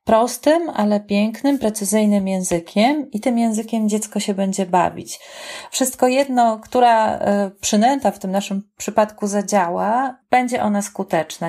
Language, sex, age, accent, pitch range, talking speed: Polish, female, 30-49, native, 190-230 Hz, 125 wpm